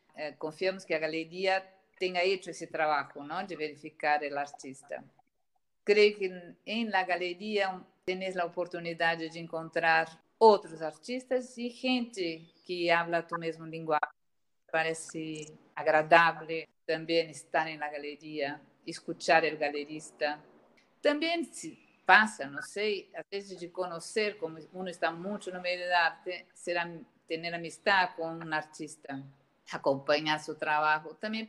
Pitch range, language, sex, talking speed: 150-190 Hz, Spanish, female, 135 wpm